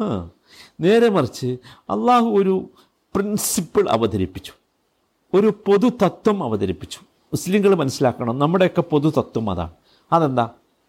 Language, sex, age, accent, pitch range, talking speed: Malayalam, male, 50-69, native, 125-210 Hz, 85 wpm